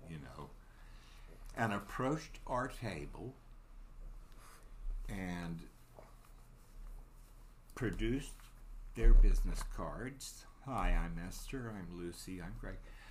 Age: 60-79